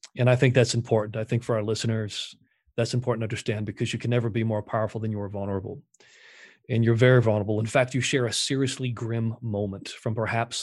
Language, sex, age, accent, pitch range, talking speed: English, male, 40-59, American, 115-140 Hz, 220 wpm